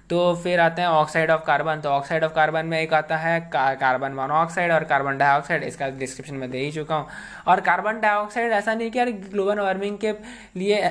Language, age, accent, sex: Hindi, 20-39, native, male